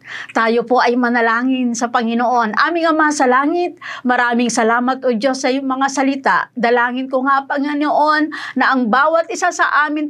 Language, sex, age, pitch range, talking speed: Filipino, female, 40-59, 240-290 Hz, 165 wpm